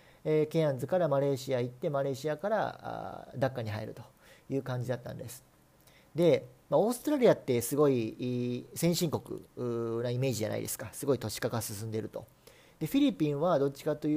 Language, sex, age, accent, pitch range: Japanese, male, 40-59, native, 125-170 Hz